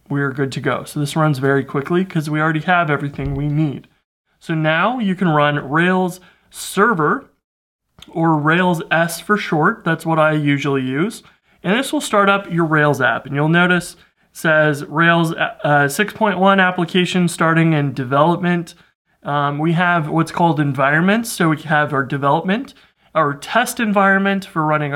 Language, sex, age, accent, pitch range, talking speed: English, male, 30-49, American, 145-185 Hz, 170 wpm